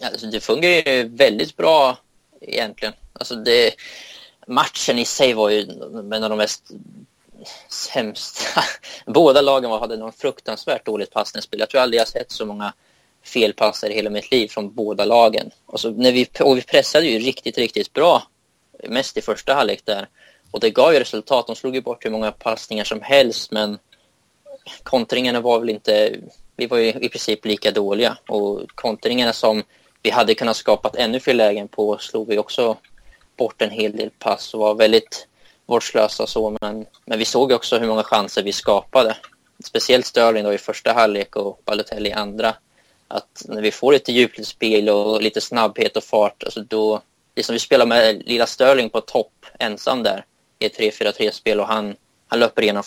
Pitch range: 105-125 Hz